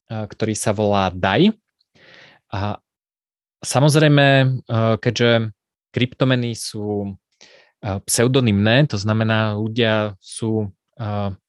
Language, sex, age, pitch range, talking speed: Slovak, male, 20-39, 105-125 Hz, 75 wpm